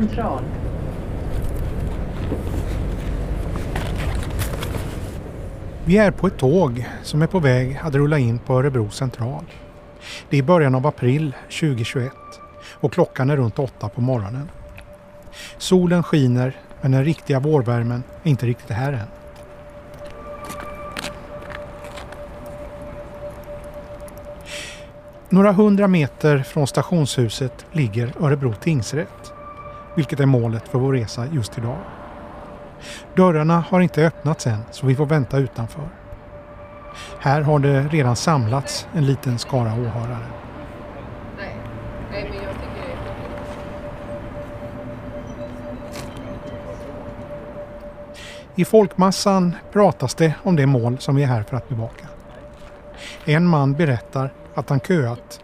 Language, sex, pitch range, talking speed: Swedish, male, 120-155 Hz, 100 wpm